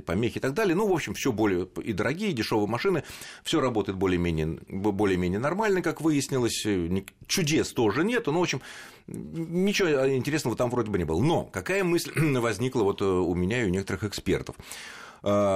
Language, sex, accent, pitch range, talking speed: Russian, male, native, 85-140 Hz, 175 wpm